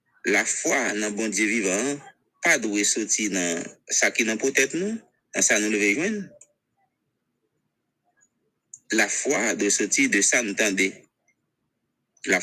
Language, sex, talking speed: English, male, 125 wpm